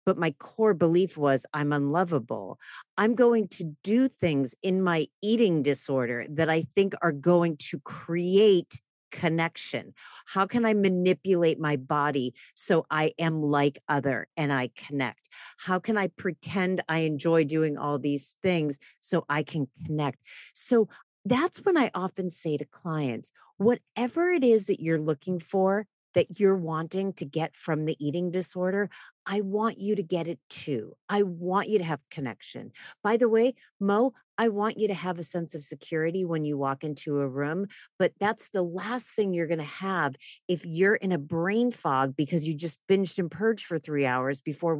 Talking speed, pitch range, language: 175 wpm, 150-195 Hz, English